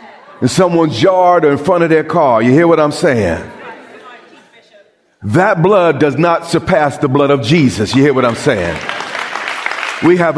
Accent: American